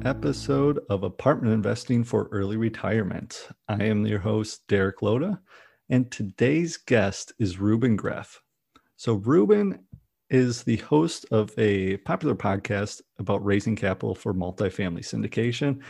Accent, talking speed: American, 130 wpm